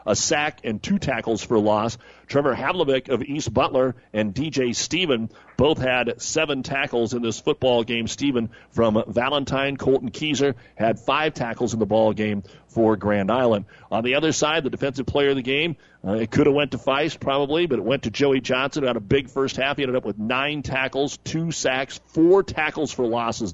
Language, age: English, 40-59